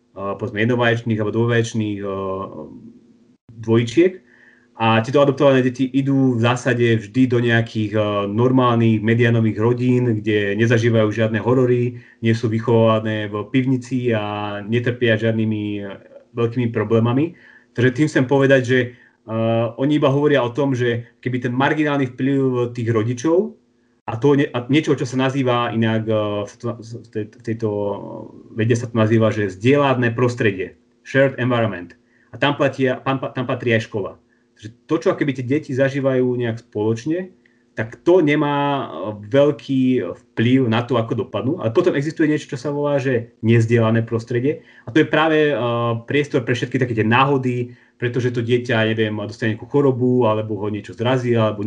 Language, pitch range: Slovak, 115-135 Hz